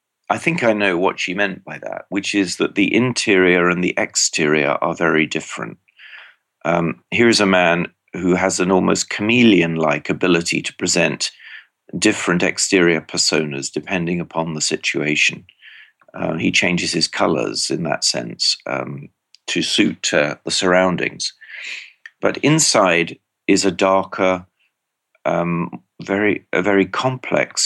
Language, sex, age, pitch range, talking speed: English, male, 40-59, 80-100 Hz, 135 wpm